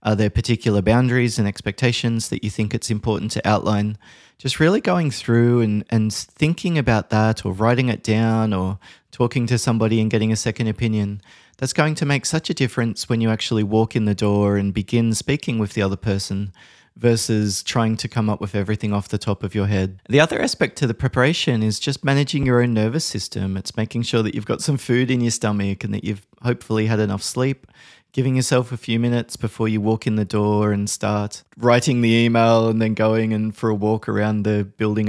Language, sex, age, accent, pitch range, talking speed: English, male, 20-39, Australian, 105-120 Hz, 215 wpm